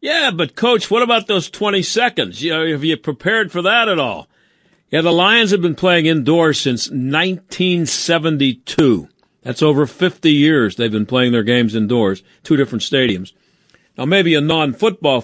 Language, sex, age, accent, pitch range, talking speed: English, male, 50-69, American, 140-190 Hz, 170 wpm